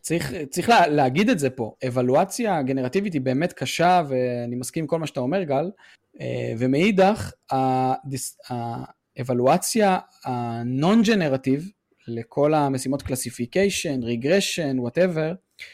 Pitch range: 130-175 Hz